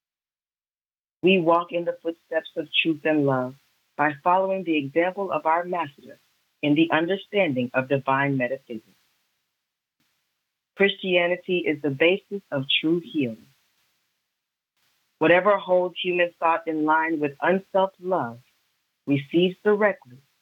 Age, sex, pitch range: 40-59, female, 140-180 Hz